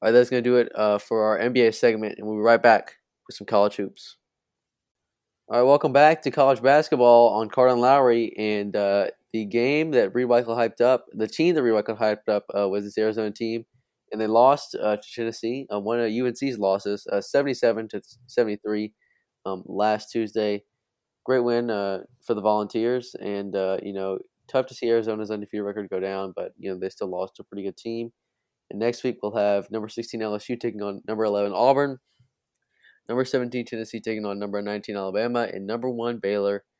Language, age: English, 20-39